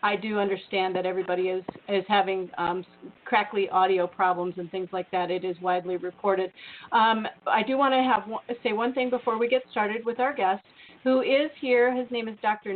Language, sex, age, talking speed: English, female, 40-59, 205 wpm